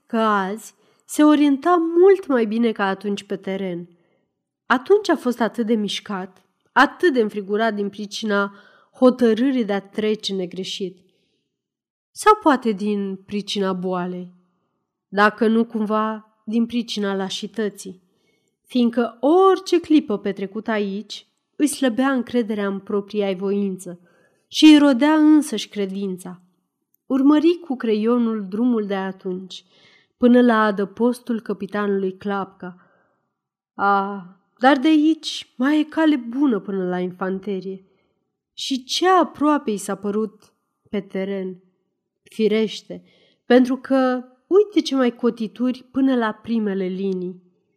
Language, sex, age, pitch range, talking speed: Romanian, female, 30-49, 195-260 Hz, 120 wpm